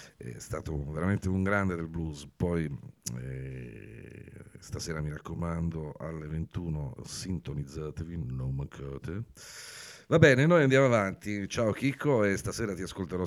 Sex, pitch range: male, 75-100 Hz